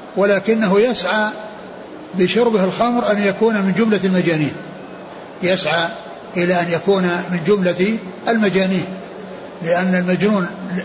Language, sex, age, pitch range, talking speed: Arabic, male, 60-79, 175-210 Hz, 100 wpm